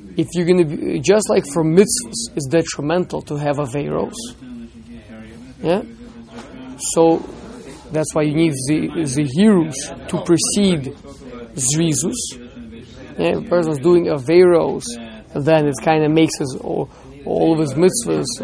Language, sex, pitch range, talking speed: English, male, 140-180 Hz, 140 wpm